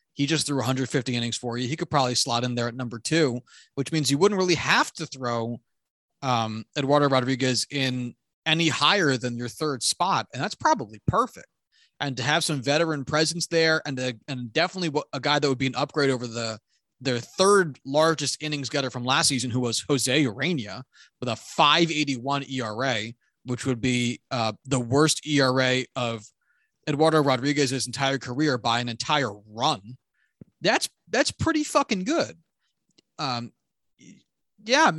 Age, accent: 30-49, American